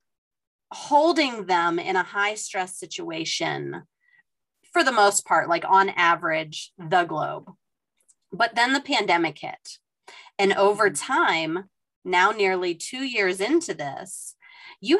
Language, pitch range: English, 180-270 Hz